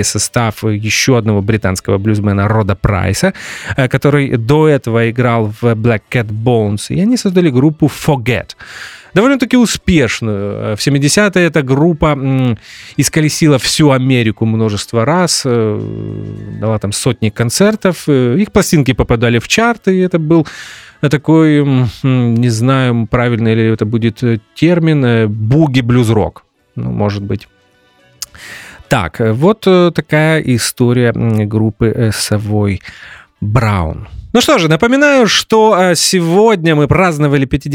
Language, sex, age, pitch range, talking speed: English, male, 30-49, 110-155 Hz, 110 wpm